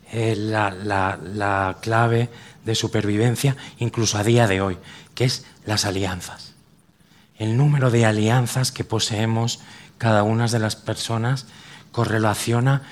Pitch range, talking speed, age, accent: 105-125 Hz, 125 wpm, 40-59, Spanish